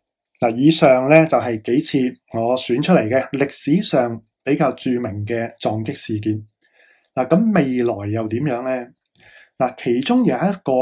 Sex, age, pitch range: male, 20-39, 120-165 Hz